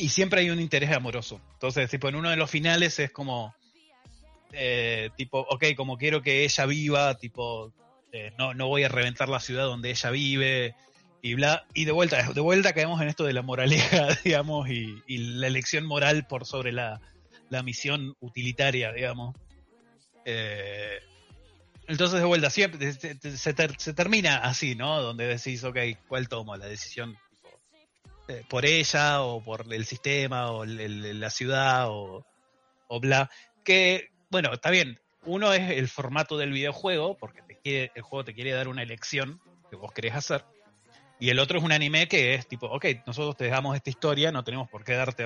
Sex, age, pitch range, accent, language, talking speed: male, 20-39, 120-150 Hz, Argentinian, Spanish, 185 wpm